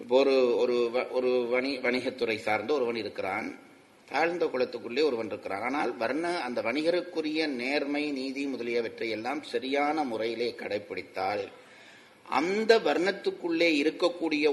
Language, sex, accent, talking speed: Tamil, male, native, 105 wpm